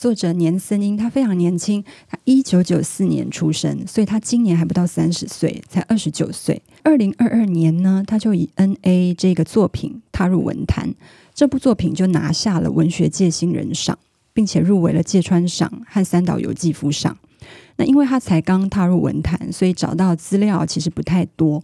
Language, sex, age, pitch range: Chinese, female, 20-39, 170-205 Hz